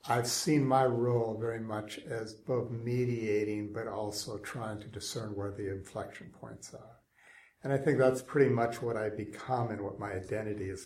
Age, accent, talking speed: 60-79, American, 180 wpm